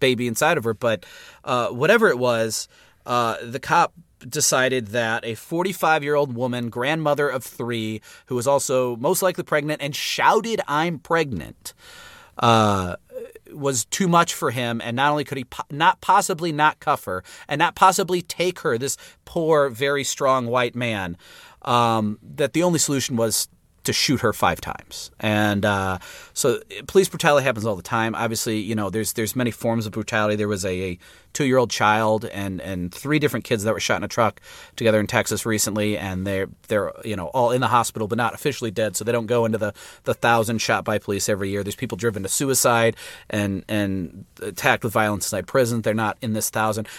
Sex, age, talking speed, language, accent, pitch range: male, 30-49, 195 wpm, English, American, 105-145 Hz